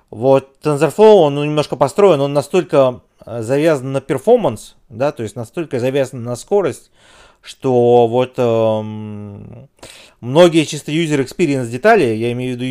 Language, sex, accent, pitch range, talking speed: Russian, male, native, 115-145 Hz, 140 wpm